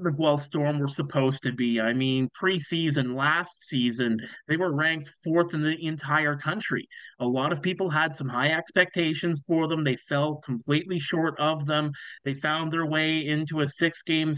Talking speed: 180 wpm